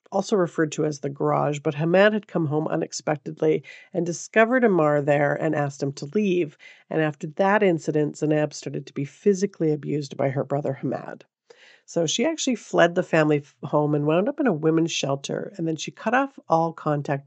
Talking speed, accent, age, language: 195 wpm, American, 50-69, English